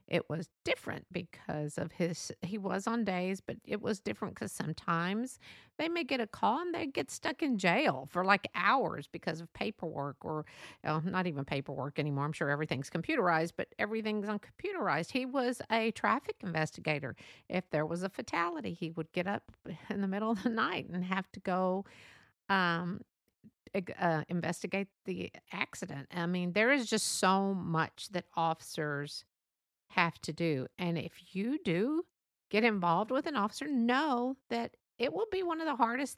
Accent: American